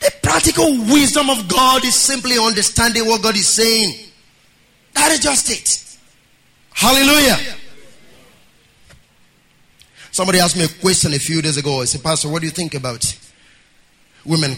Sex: male